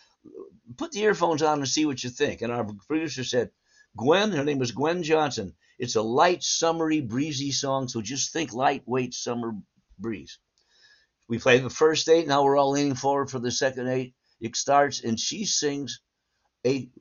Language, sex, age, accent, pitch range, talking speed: English, male, 60-79, American, 135-170 Hz, 180 wpm